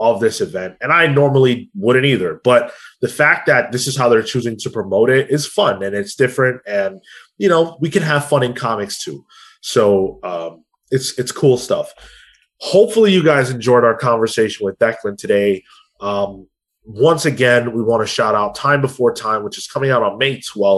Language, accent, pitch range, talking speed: English, American, 110-145 Hz, 195 wpm